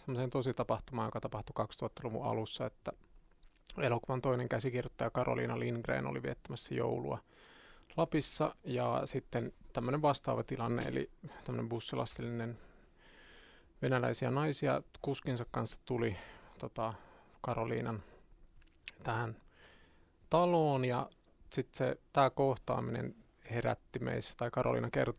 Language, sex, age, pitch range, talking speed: Finnish, male, 30-49, 110-130 Hz, 100 wpm